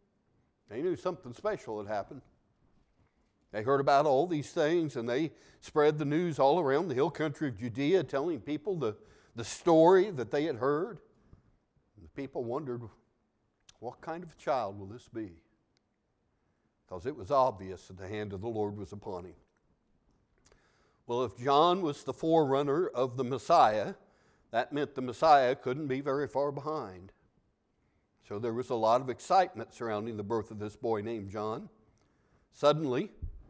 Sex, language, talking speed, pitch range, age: male, English, 165 wpm, 110-150 Hz, 60-79